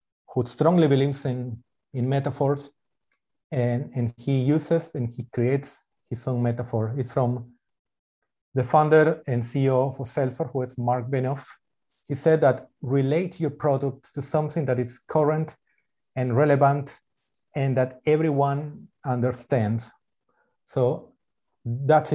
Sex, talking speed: male, 125 wpm